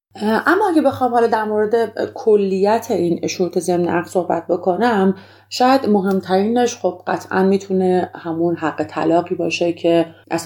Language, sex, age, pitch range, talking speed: Persian, female, 30-49, 165-215 Hz, 125 wpm